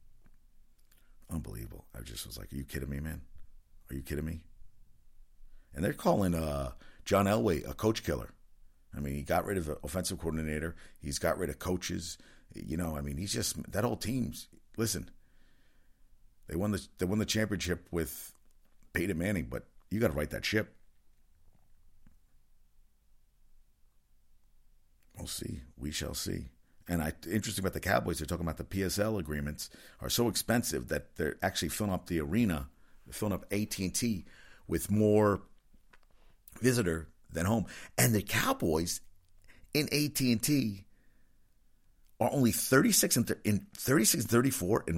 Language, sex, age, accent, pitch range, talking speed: English, male, 50-69, American, 80-105 Hz, 145 wpm